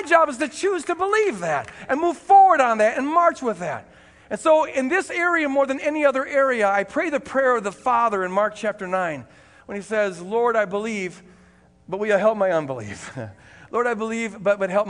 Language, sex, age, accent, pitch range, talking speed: English, male, 50-69, American, 200-280 Hz, 225 wpm